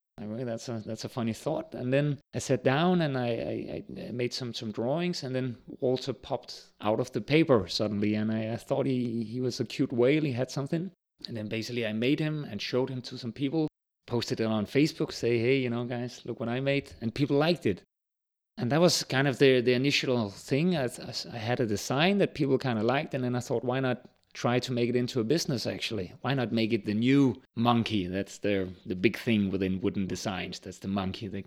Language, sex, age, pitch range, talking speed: English, male, 30-49, 110-135 Hz, 235 wpm